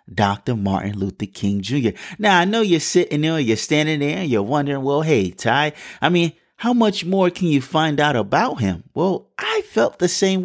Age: 30-49